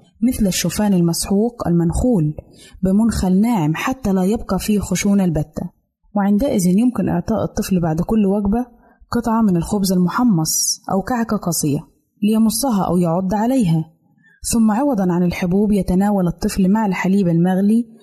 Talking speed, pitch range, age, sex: 130 wpm, 180-225 Hz, 20-39, female